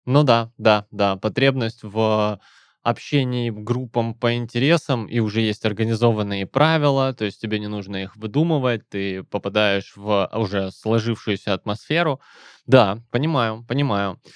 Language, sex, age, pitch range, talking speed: Russian, male, 20-39, 105-130 Hz, 130 wpm